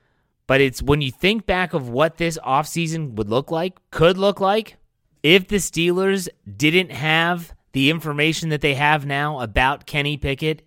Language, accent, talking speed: English, American, 170 wpm